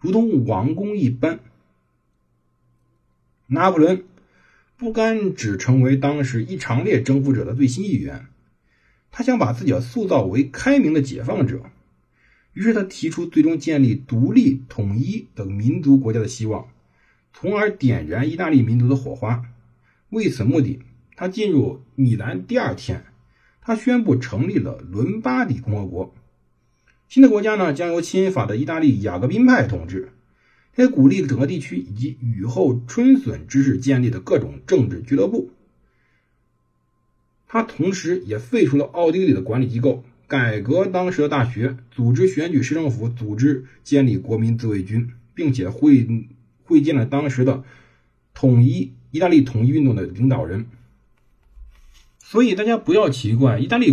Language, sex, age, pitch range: Chinese, male, 50-69, 115-155 Hz